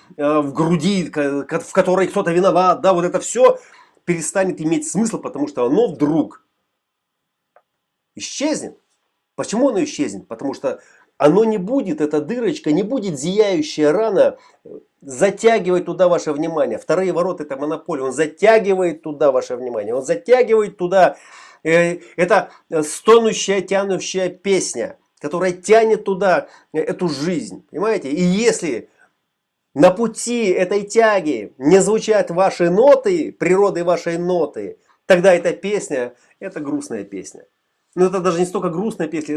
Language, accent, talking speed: Russian, native, 130 wpm